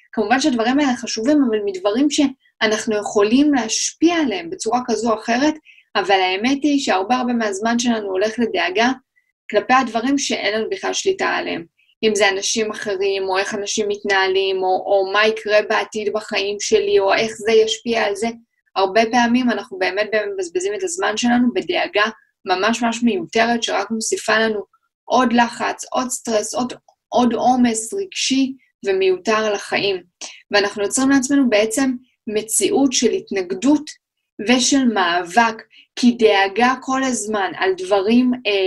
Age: 10-29